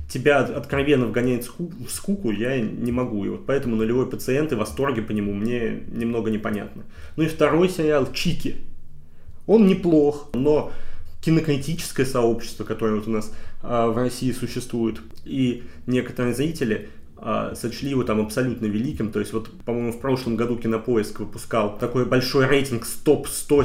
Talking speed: 150 wpm